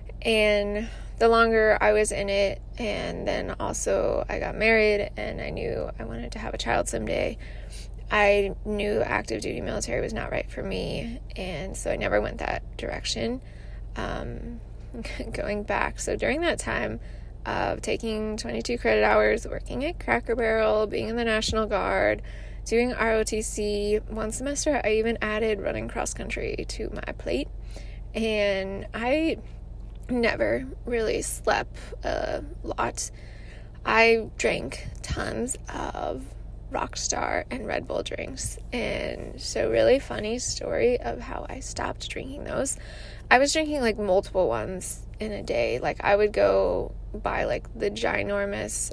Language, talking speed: English, 145 wpm